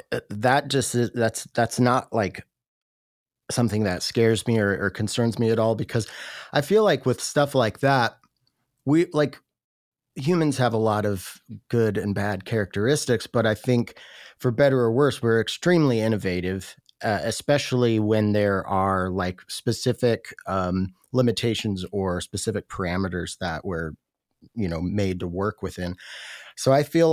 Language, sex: English, male